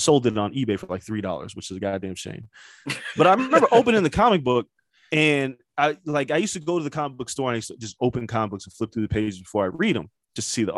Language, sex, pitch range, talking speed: English, male, 110-155 Hz, 290 wpm